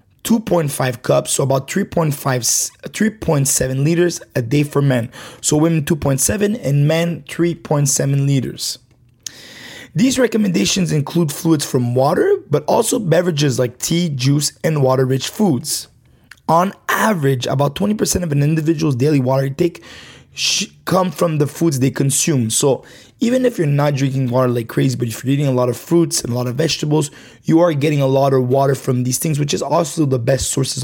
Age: 20-39